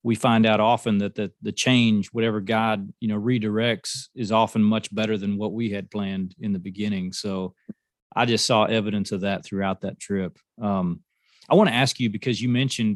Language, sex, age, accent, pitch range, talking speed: English, male, 30-49, American, 105-120 Hz, 205 wpm